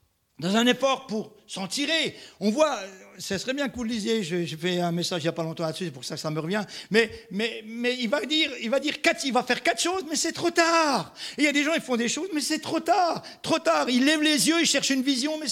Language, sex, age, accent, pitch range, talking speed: French, male, 50-69, French, 205-295 Hz, 290 wpm